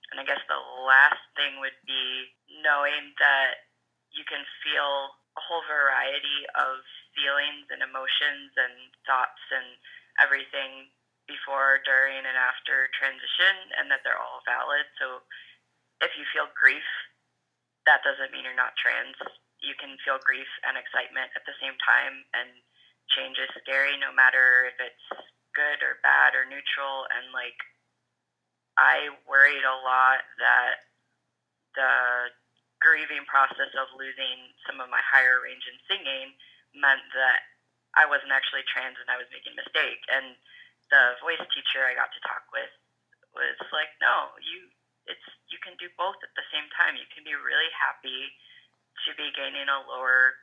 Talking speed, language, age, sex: 155 wpm, English, 20-39, female